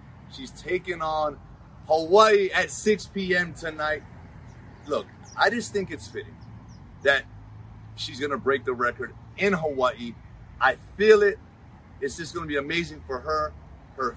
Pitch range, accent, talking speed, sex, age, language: 125-190 Hz, American, 150 wpm, male, 30-49, English